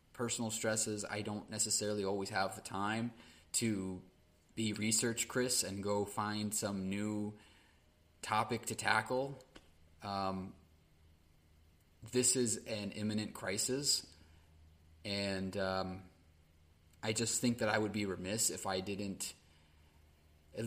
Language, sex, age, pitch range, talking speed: English, male, 20-39, 90-110 Hz, 120 wpm